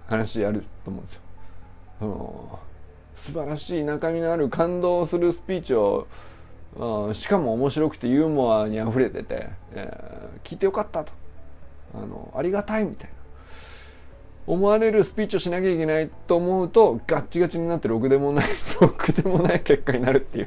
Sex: male